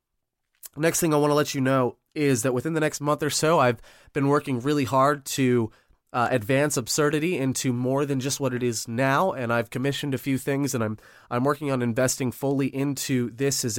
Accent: American